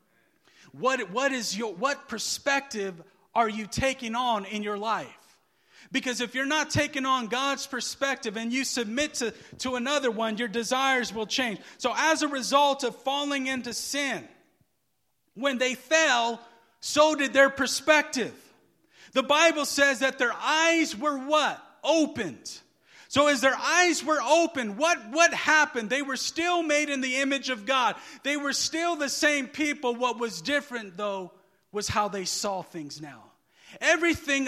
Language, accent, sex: English, American, male